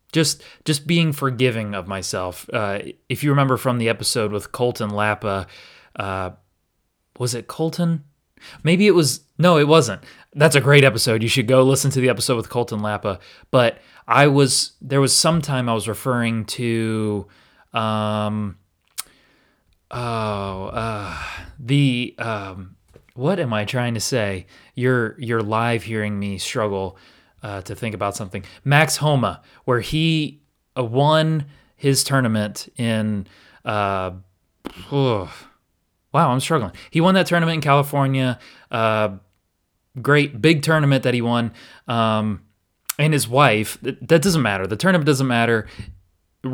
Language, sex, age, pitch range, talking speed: English, male, 30-49, 100-140 Hz, 145 wpm